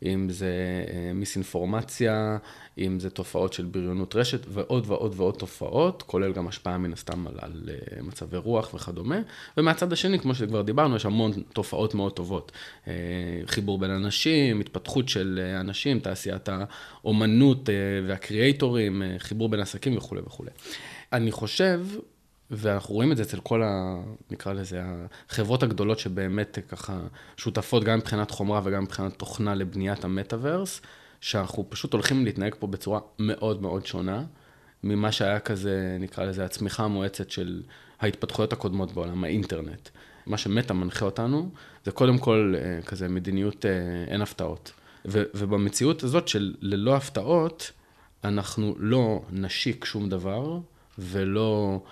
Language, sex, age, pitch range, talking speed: Hebrew, male, 20-39, 95-115 Hz, 130 wpm